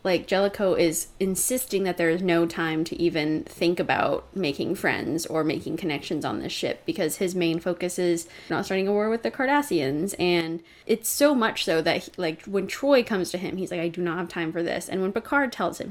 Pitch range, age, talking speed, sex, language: 170-220 Hz, 20-39, 225 wpm, female, English